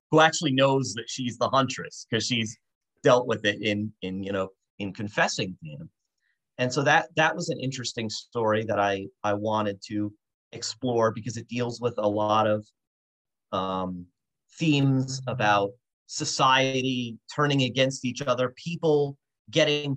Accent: American